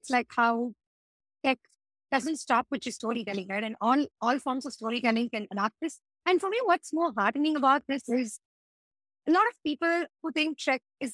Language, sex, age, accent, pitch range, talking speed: English, female, 20-39, Indian, 225-290 Hz, 195 wpm